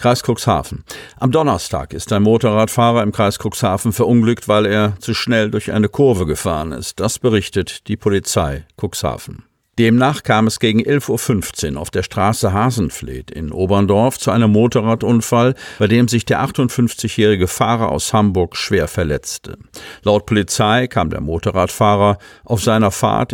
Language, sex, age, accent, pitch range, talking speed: German, male, 50-69, German, 90-115 Hz, 150 wpm